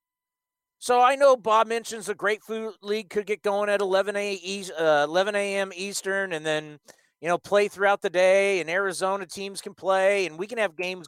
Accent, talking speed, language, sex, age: American, 185 wpm, English, male, 40-59